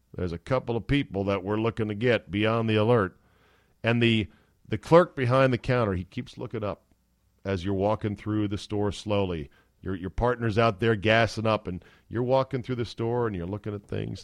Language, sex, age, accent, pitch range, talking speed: English, male, 50-69, American, 95-125 Hz, 205 wpm